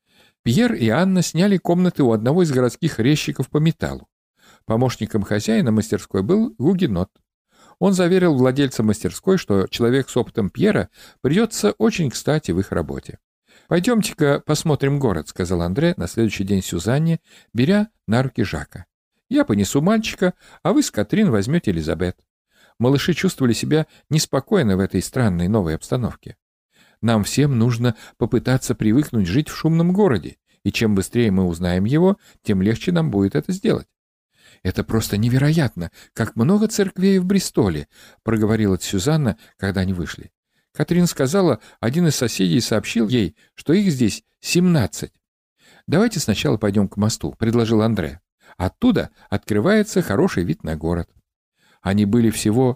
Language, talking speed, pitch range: Russian, 145 wpm, 100-170 Hz